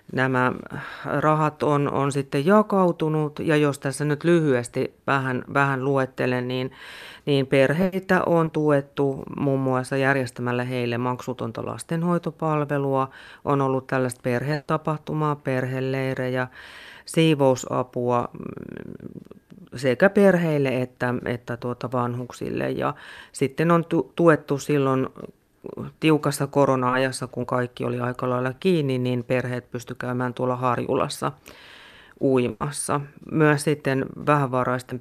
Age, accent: 30-49, native